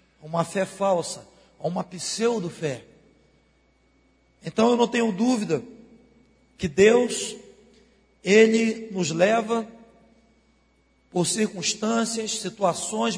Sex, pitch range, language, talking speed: male, 190-240 Hz, Portuguese, 85 wpm